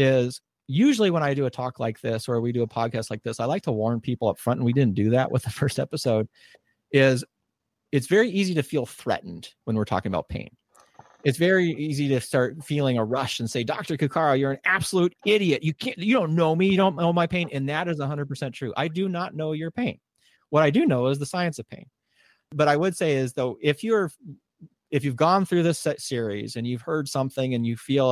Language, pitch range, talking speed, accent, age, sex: English, 120-160 Hz, 240 wpm, American, 30-49, male